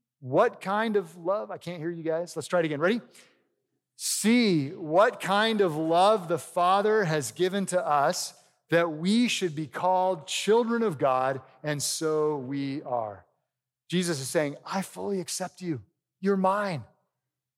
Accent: American